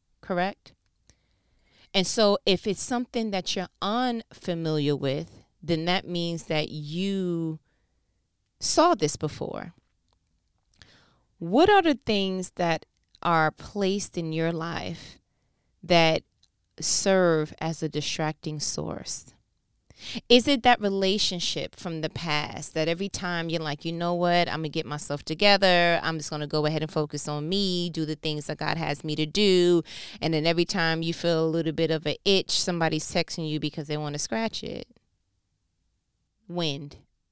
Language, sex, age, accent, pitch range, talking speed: English, female, 30-49, American, 160-205 Hz, 155 wpm